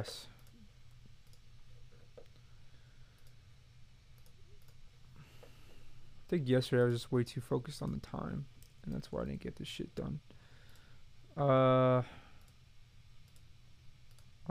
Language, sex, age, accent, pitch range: English, male, 20-39, American, 120-130 Hz